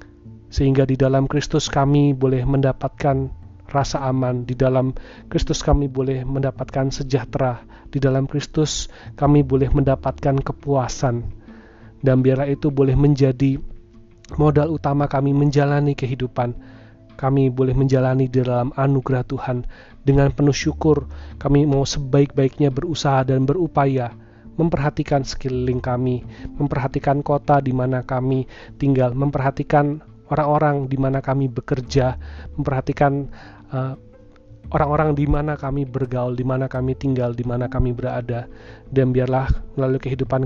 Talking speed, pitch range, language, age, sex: 125 wpm, 125-140 Hz, Indonesian, 30-49, male